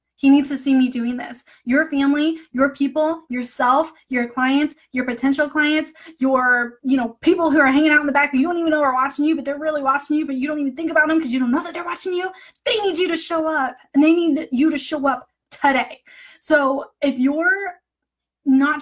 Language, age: English, 10-29